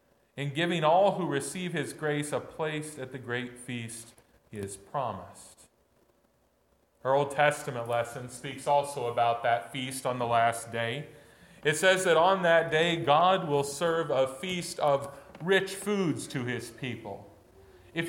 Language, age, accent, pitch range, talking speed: English, 40-59, American, 125-160 Hz, 155 wpm